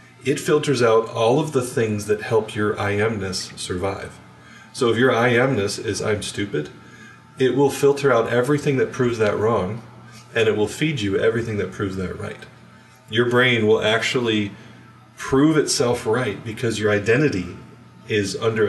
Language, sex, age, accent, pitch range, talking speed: English, male, 30-49, American, 100-120 Hz, 165 wpm